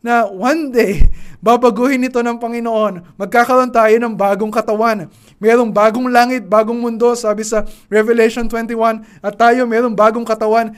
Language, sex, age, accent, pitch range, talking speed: Filipino, male, 20-39, native, 195-235 Hz, 145 wpm